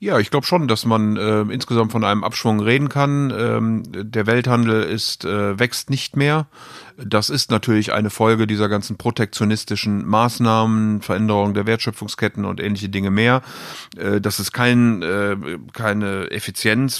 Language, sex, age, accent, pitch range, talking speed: German, male, 40-59, German, 105-120 Hz, 155 wpm